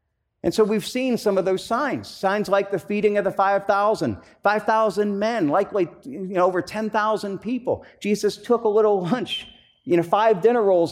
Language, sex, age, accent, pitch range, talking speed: English, male, 50-69, American, 165-210 Hz, 180 wpm